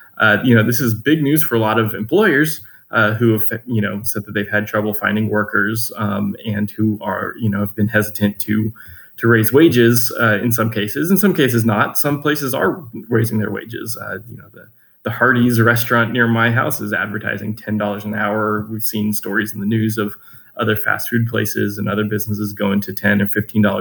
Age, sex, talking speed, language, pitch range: 20-39, male, 215 wpm, English, 105-115 Hz